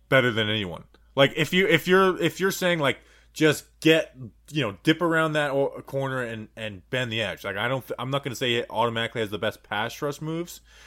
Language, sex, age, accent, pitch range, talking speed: English, male, 20-39, American, 115-155 Hz, 225 wpm